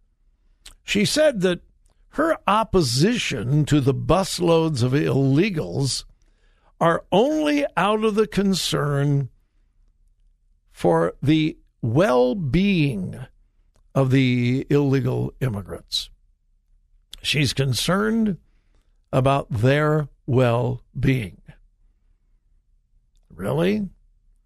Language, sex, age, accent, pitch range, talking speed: English, male, 60-79, American, 135-175 Hz, 75 wpm